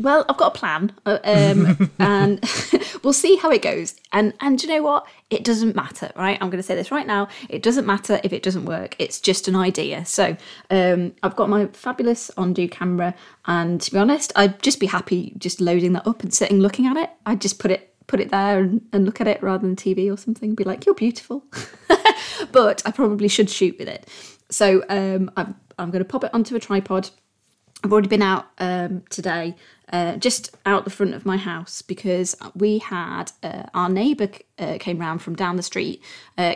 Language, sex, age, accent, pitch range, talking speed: English, female, 20-39, British, 180-215 Hz, 215 wpm